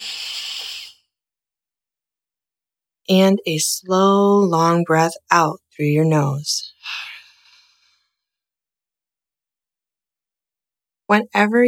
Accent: American